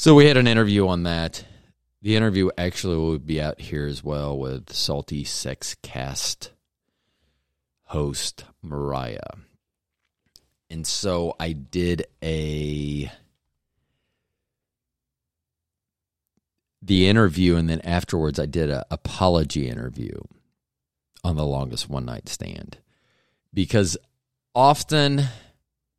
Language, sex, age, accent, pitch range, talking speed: English, male, 40-59, American, 70-105 Hz, 105 wpm